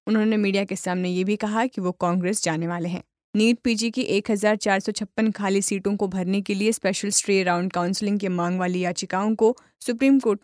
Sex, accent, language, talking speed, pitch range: female, native, Hindi, 195 wpm, 185-220 Hz